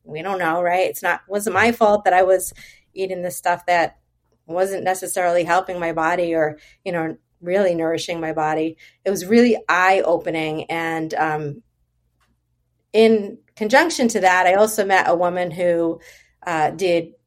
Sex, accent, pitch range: female, American, 160-190 Hz